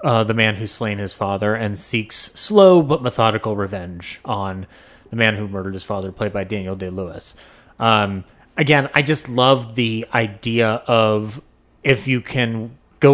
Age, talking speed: 30-49, 160 wpm